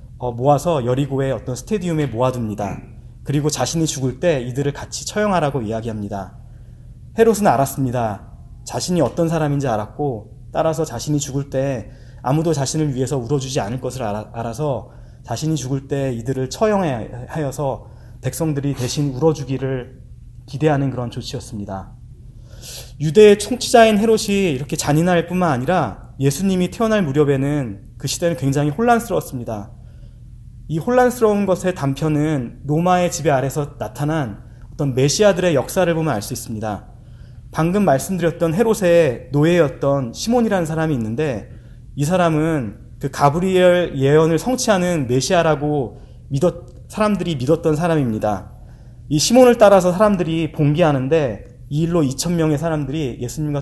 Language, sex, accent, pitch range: Korean, male, native, 120-165 Hz